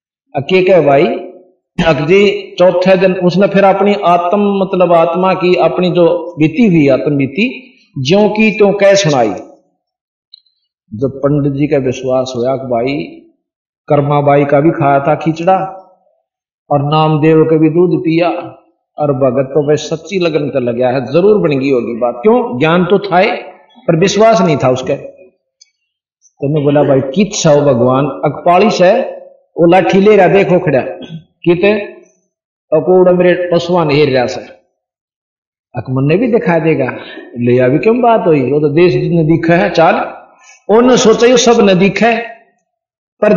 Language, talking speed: Hindi, 135 wpm